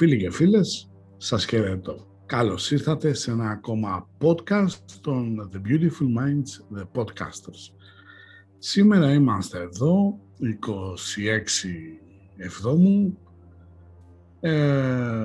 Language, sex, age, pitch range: Greek, male, 60-79, 90-140 Hz